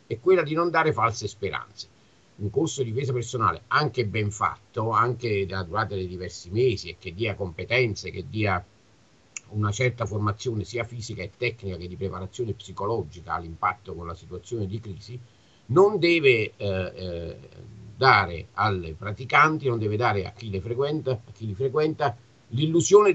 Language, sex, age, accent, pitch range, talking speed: Italian, male, 50-69, native, 100-130 Hz, 165 wpm